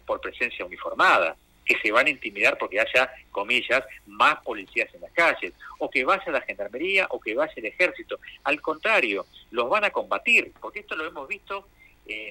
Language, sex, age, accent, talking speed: Spanish, male, 50-69, Argentinian, 190 wpm